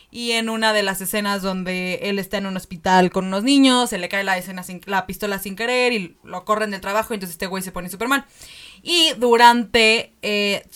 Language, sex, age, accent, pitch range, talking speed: Spanish, female, 20-39, Mexican, 185-225 Hz, 230 wpm